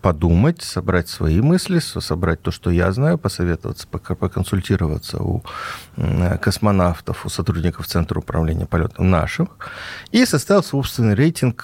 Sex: male